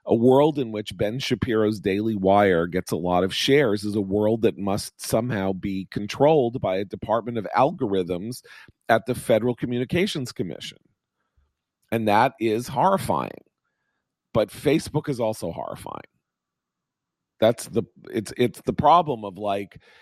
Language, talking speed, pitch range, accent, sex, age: English, 145 wpm, 100-125 Hz, American, male, 40-59